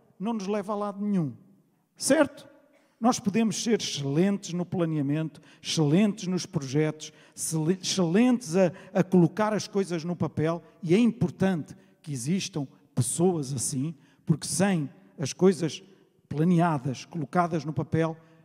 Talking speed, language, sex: 125 wpm, Portuguese, male